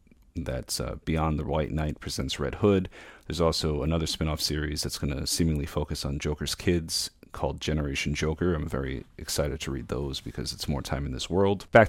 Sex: male